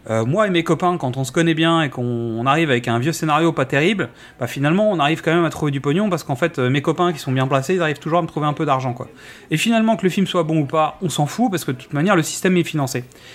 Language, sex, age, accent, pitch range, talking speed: French, male, 30-49, French, 125-170 Hz, 320 wpm